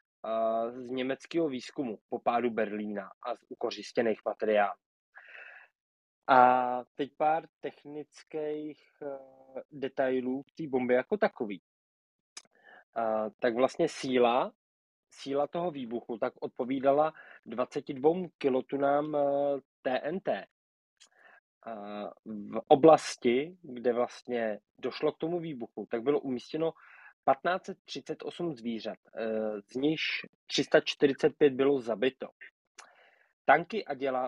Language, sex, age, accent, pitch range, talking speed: Czech, male, 20-39, native, 115-145 Hz, 95 wpm